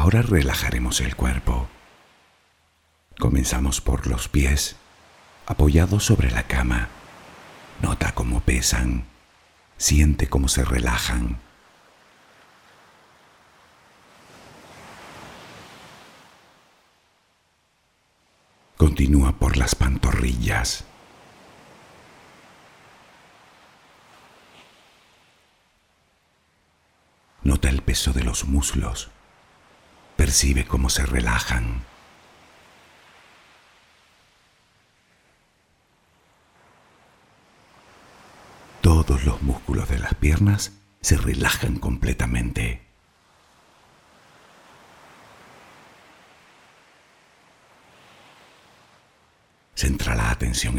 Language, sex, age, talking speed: Spanish, male, 60-79, 55 wpm